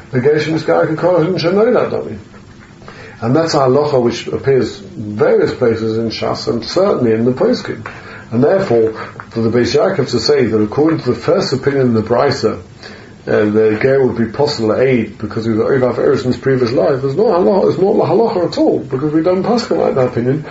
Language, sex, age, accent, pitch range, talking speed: English, male, 40-59, British, 115-145 Hz, 210 wpm